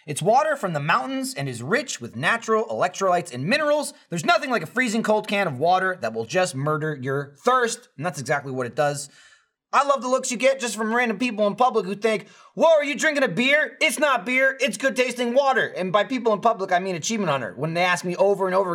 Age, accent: 30-49, American